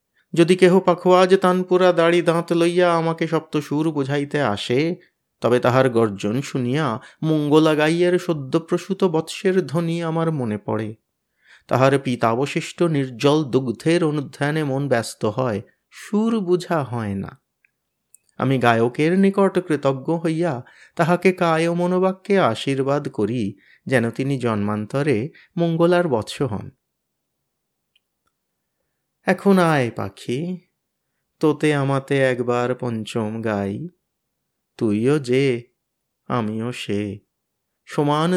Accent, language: native, Bengali